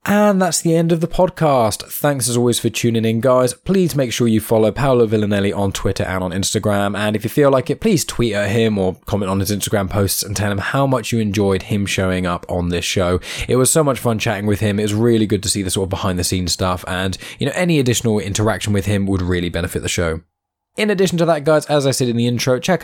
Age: 20-39